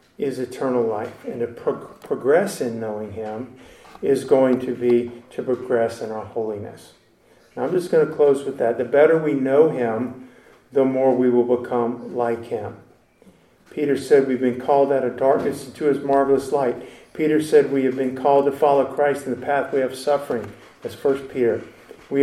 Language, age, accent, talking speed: English, 50-69, American, 185 wpm